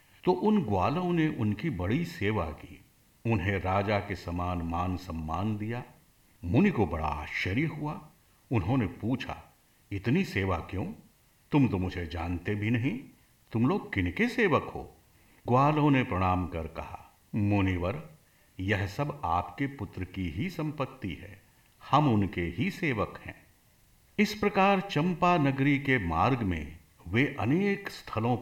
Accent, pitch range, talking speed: native, 90-150 Hz, 135 wpm